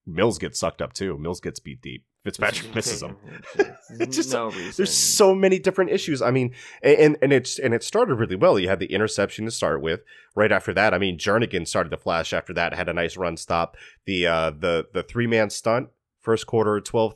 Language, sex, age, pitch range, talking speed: English, male, 30-49, 100-125 Hz, 215 wpm